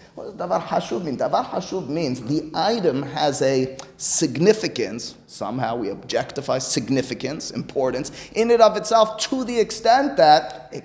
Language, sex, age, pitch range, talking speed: English, male, 30-49, 140-220 Hz, 155 wpm